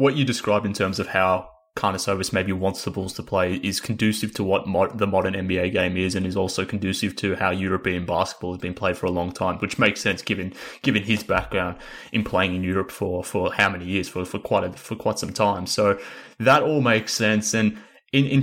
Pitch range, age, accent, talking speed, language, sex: 95-110 Hz, 20-39, Australian, 230 wpm, English, male